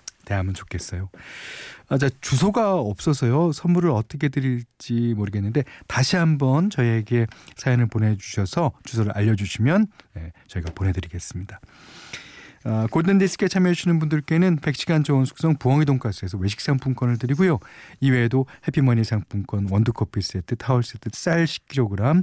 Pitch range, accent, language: 100-150 Hz, native, Korean